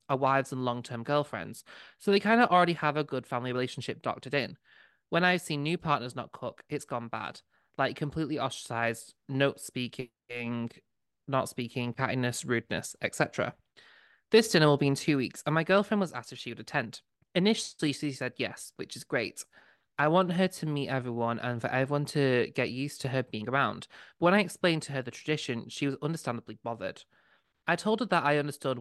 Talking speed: 195 wpm